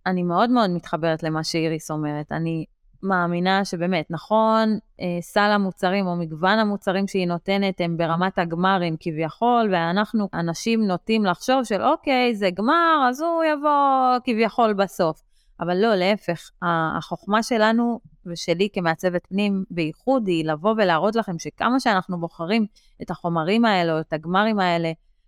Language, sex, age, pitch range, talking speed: Hebrew, female, 20-39, 170-220 Hz, 135 wpm